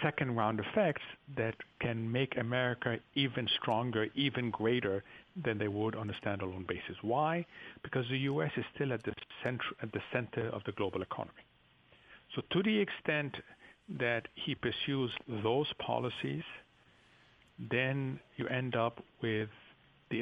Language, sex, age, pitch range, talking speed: English, male, 50-69, 105-130 Hz, 145 wpm